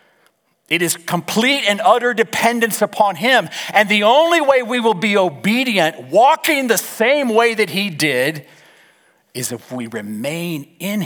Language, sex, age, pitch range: English, male, 40-59, 155-240 Hz